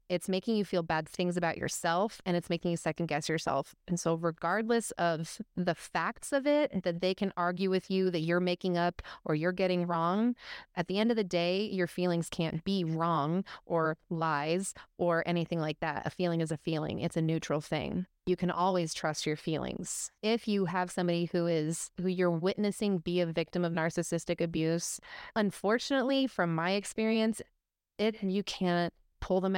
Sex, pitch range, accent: female, 170-195 Hz, American